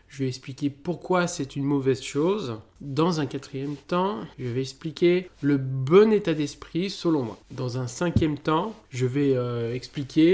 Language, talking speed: French, 170 wpm